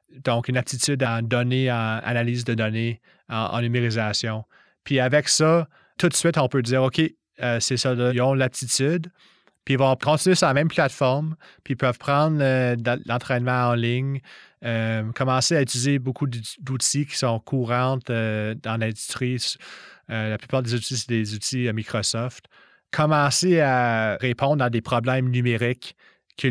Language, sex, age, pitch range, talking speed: French, male, 30-49, 120-140 Hz, 165 wpm